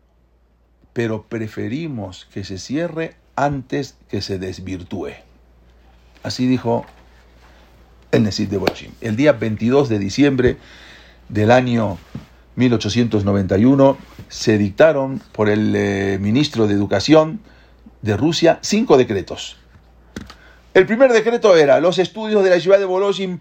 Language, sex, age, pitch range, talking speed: English, male, 50-69, 100-165 Hz, 115 wpm